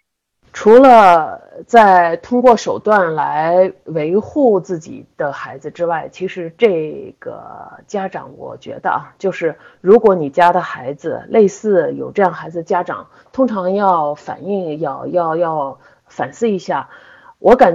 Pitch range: 170-235 Hz